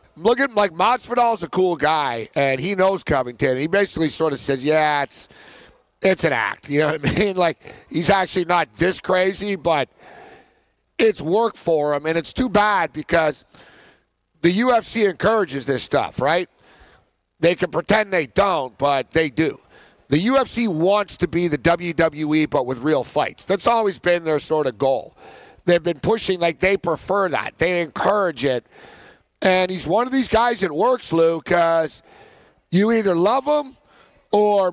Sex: male